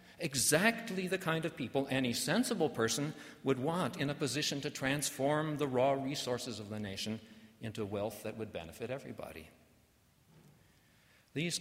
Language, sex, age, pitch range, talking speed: English, male, 50-69, 110-135 Hz, 145 wpm